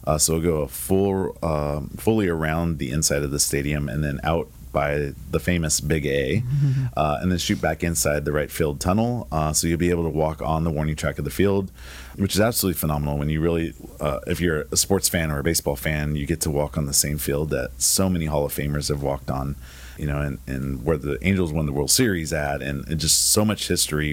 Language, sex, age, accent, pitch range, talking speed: English, male, 30-49, American, 70-85 Hz, 240 wpm